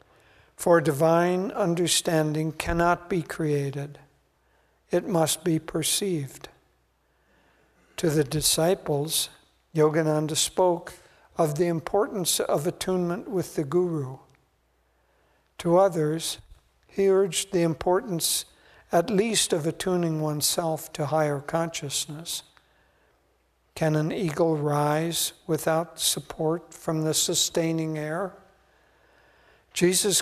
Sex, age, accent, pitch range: male, 60-79, American, 150-175 Hz